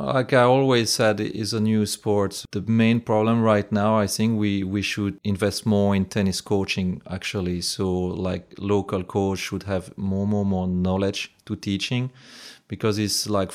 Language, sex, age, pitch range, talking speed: English, male, 30-49, 90-105 Hz, 175 wpm